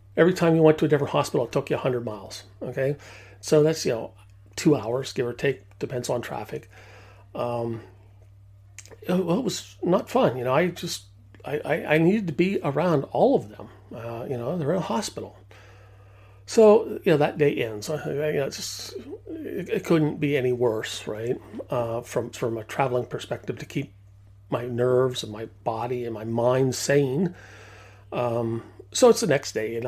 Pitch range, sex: 105-150 Hz, male